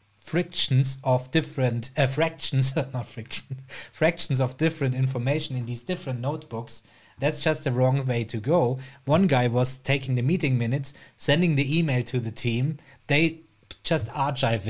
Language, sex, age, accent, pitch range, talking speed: English, male, 30-49, German, 120-155 Hz, 155 wpm